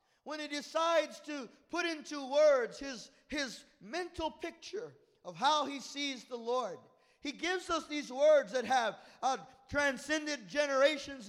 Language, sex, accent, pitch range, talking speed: English, male, American, 230-280 Hz, 145 wpm